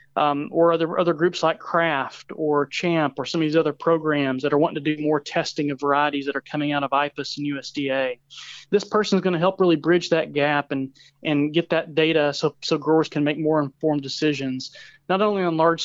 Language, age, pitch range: English, 30-49, 145-180 Hz